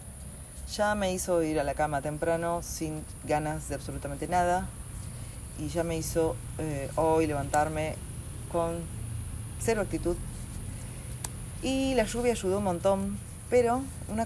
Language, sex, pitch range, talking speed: Spanish, female, 115-185 Hz, 130 wpm